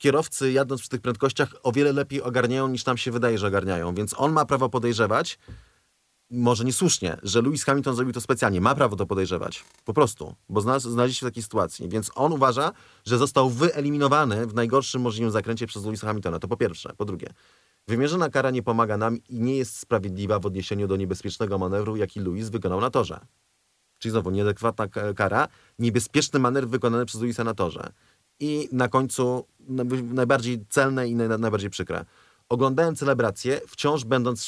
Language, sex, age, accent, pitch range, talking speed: Polish, male, 30-49, native, 105-130 Hz, 180 wpm